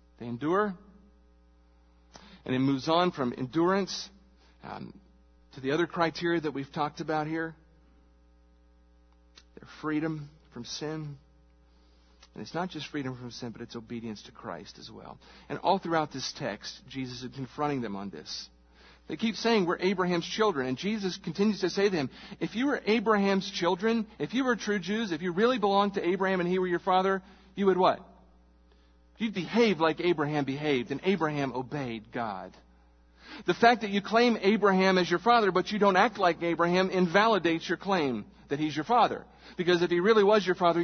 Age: 50-69